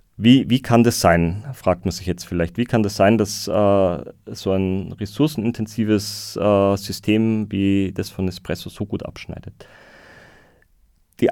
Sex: male